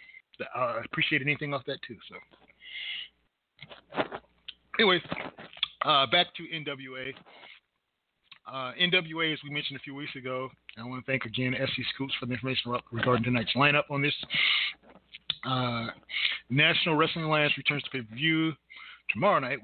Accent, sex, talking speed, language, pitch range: American, male, 150 wpm, English, 130-150 Hz